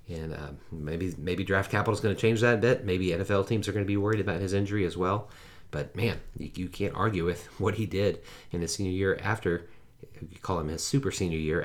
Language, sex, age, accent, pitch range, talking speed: English, male, 30-49, American, 85-100 Hz, 245 wpm